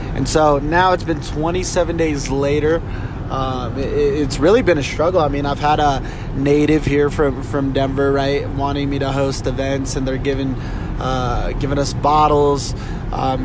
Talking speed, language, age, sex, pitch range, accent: 165 wpm, English, 20-39, male, 130-145 Hz, American